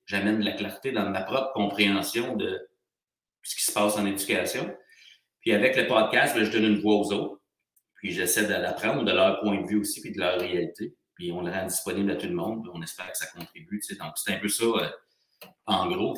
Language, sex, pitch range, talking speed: French, male, 90-110 Hz, 225 wpm